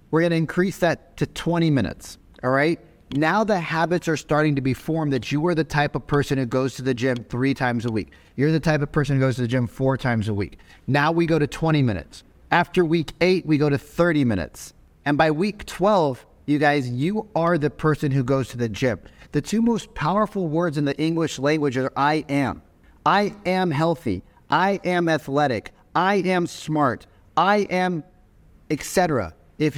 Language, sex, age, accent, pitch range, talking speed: English, male, 30-49, American, 130-175 Hz, 205 wpm